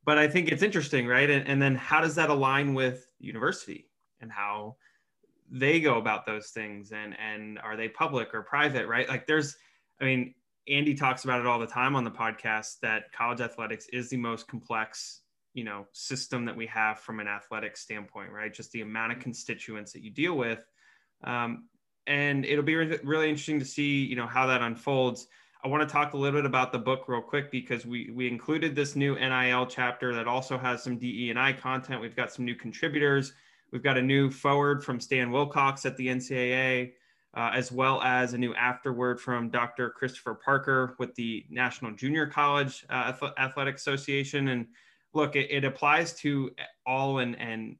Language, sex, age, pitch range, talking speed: English, male, 20-39, 115-140 Hz, 195 wpm